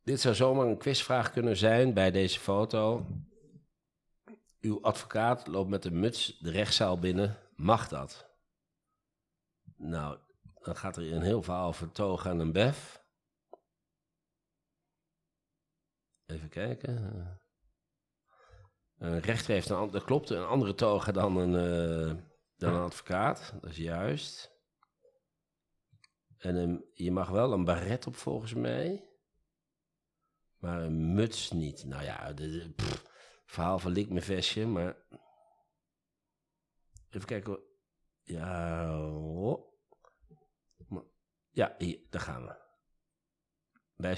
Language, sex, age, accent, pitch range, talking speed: Dutch, male, 50-69, Dutch, 85-110 Hz, 120 wpm